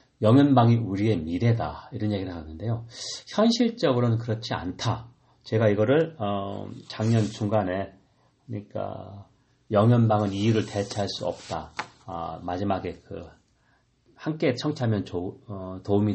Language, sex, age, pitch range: Korean, male, 40-59, 100-130 Hz